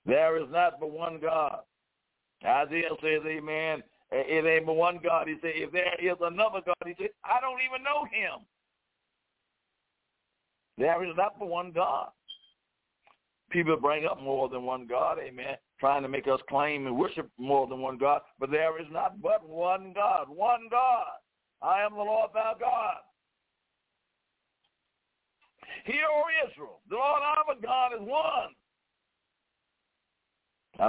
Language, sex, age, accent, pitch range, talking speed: English, male, 60-79, American, 155-220 Hz, 150 wpm